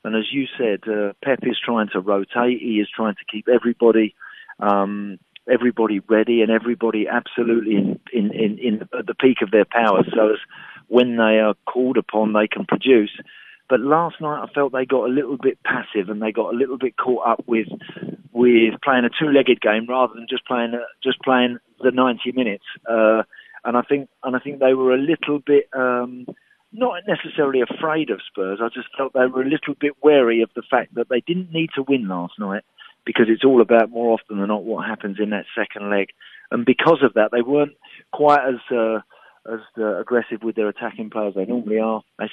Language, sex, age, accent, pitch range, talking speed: English, male, 40-59, British, 110-130 Hz, 210 wpm